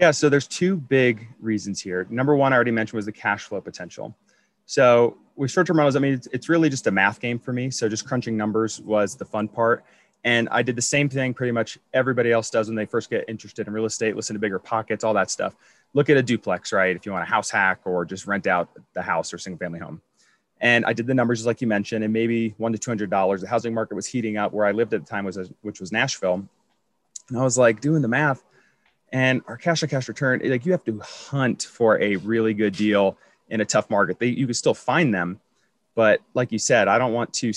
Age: 30-49